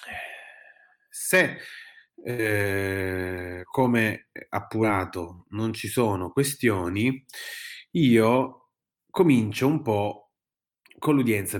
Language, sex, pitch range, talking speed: Italian, male, 105-135 Hz, 70 wpm